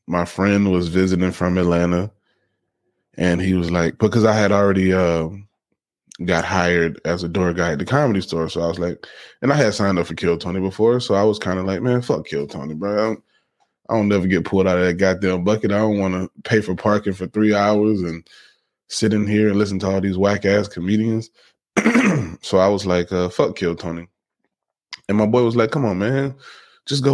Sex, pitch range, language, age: male, 85-105 Hz, English, 20-39